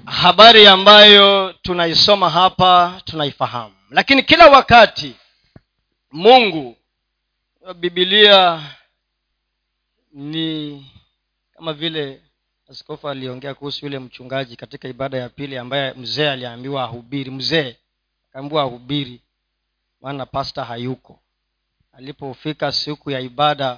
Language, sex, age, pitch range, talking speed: Swahili, male, 40-59, 135-215 Hz, 95 wpm